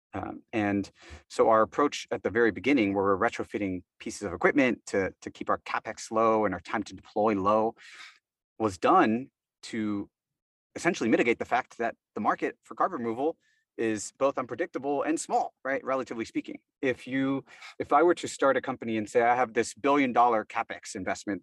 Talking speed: 180 wpm